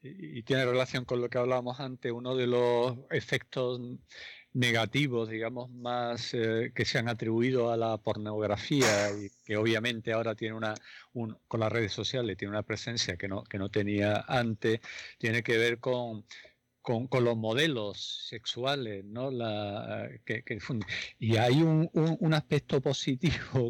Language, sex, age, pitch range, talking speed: Spanish, male, 50-69, 110-130 Hz, 160 wpm